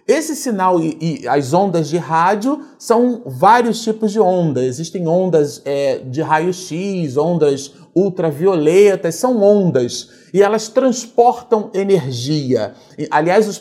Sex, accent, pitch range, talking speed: male, Brazilian, 170-230 Hz, 120 wpm